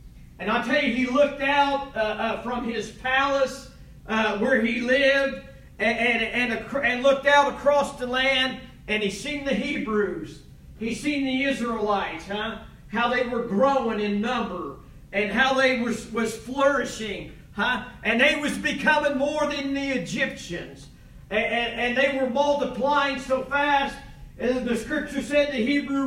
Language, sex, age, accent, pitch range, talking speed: English, male, 40-59, American, 230-295 Hz, 165 wpm